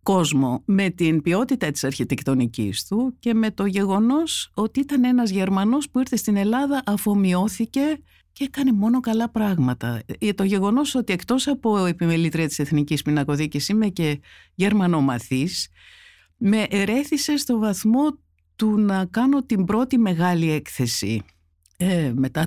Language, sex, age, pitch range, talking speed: Greek, female, 50-69, 140-220 Hz, 135 wpm